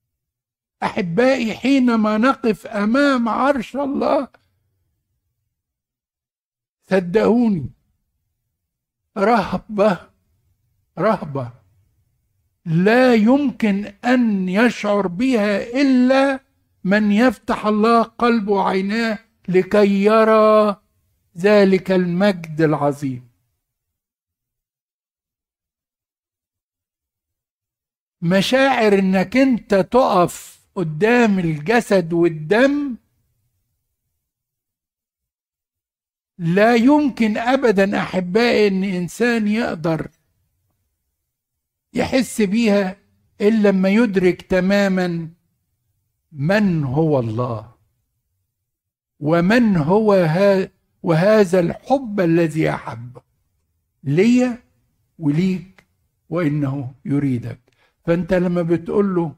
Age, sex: 60-79, male